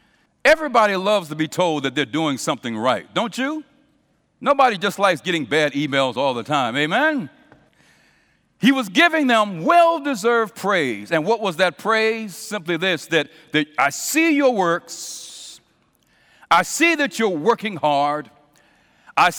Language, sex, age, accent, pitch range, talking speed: English, male, 60-79, American, 145-230 Hz, 150 wpm